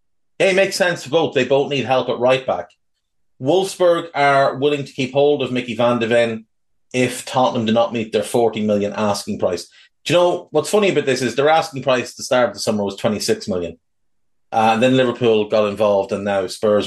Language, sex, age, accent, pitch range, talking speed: English, male, 30-49, Irish, 120-150 Hz, 220 wpm